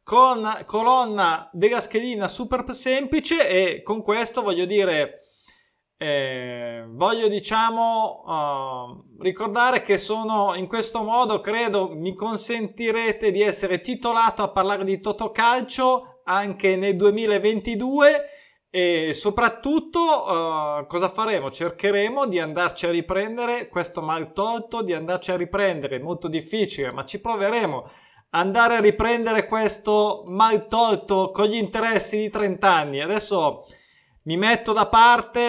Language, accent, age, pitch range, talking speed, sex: Italian, native, 20-39, 180-230 Hz, 125 wpm, male